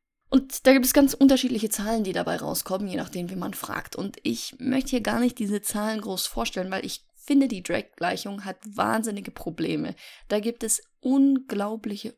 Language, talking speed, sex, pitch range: German, 185 wpm, female, 195-255 Hz